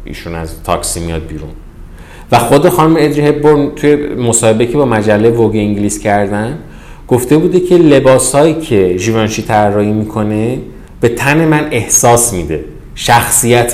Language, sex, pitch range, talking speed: Persian, male, 100-125 Hz, 140 wpm